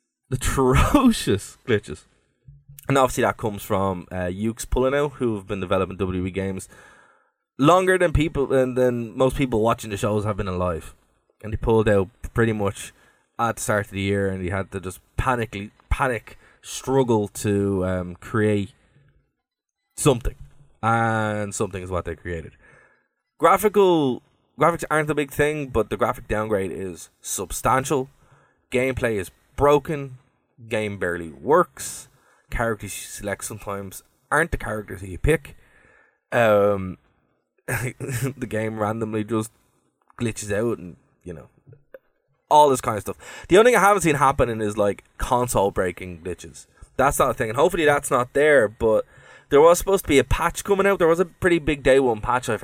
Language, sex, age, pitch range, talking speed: English, male, 20-39, 100-135 Hz, 165 wpm